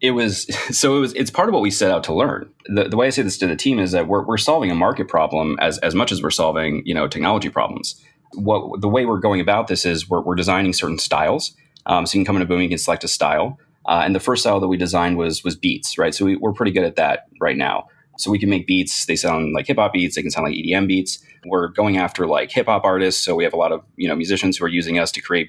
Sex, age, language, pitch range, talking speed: male, 30-49, English, 90-105 Hz, 295 wpm